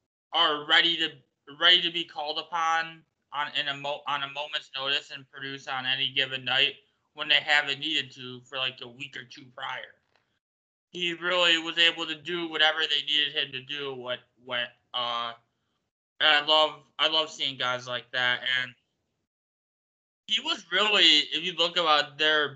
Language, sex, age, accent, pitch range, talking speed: English, male, 20-39, American, 125-165 Hz, 180 wpm